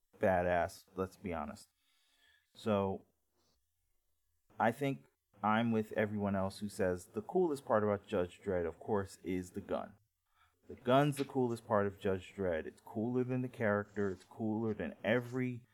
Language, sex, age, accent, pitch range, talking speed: English, male, 30-49, American, 95-115 Hz, 155 wpm